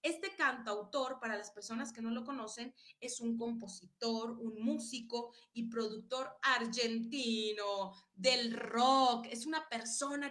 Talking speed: 130 wpm